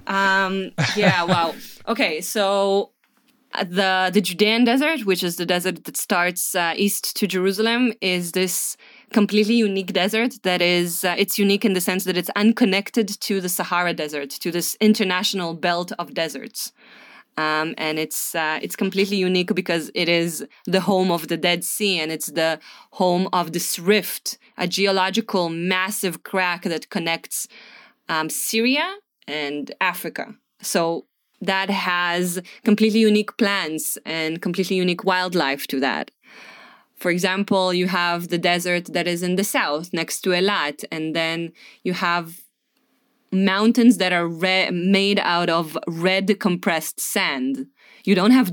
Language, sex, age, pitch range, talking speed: English, female, 20-39, 170-205 Hz, 150 wpm